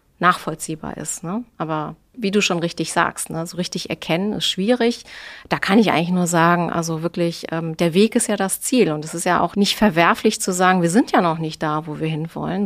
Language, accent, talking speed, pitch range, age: German, German, 230 wpm, 165-210 Hz, 30-49